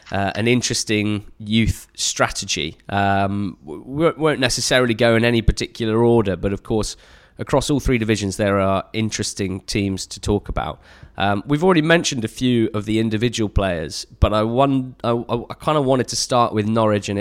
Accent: British